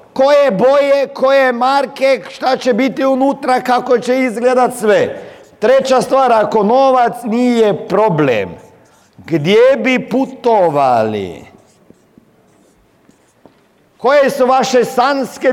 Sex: male